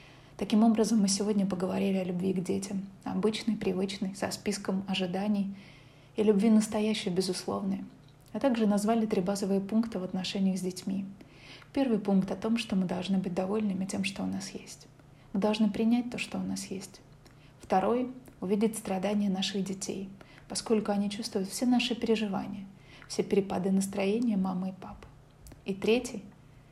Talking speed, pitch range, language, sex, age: 155 wpm, 185-210 Hz, Russian, female, 30-49